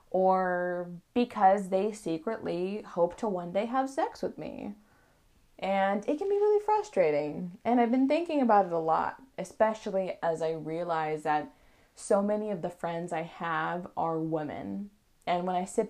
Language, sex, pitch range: English, female, 170-220 Hz